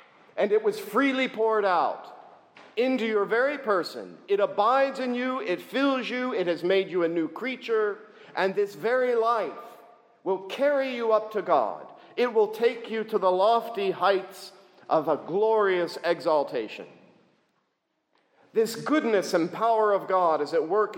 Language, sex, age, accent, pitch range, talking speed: English, male, 50-69, American, 170-255 Hz, 155 wpm